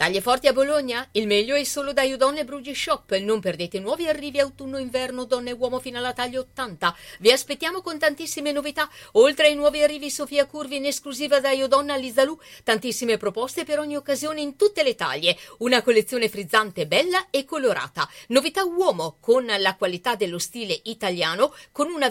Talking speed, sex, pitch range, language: 175 wpm, female, 230-300 Hz, Italian